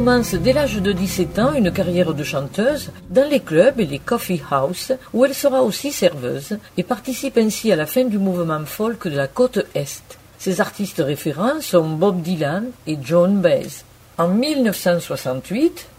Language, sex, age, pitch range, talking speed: French, female, 50-69, 170-235 Hz, 175 wpm